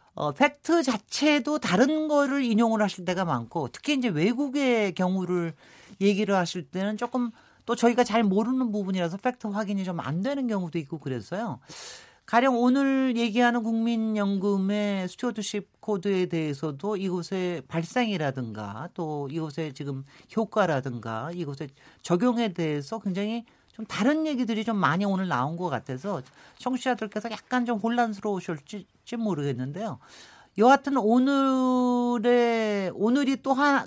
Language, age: Korean, 40-59